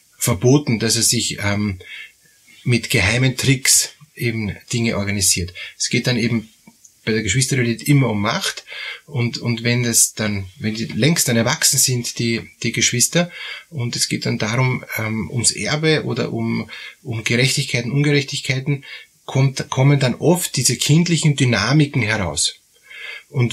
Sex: male